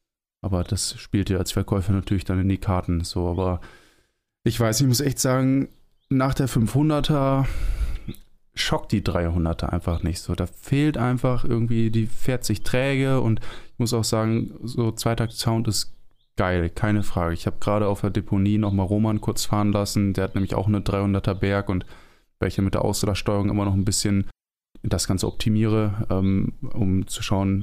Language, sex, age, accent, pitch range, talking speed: German, male, 20-39, German, 95-120 Hz, 175 wpm